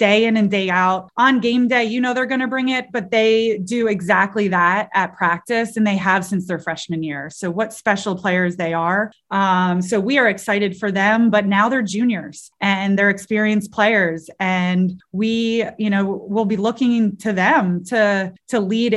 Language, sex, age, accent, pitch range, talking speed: English, female, 20-39, American, 185-215 Hz, 195 wpm